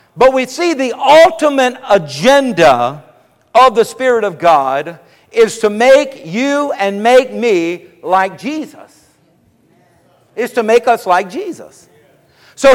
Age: 50-69